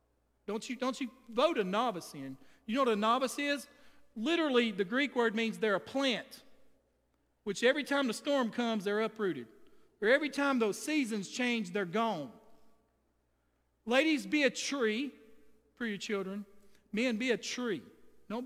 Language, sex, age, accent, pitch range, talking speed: English, male, 40-59, American, 210-275 Hz, 160 wpm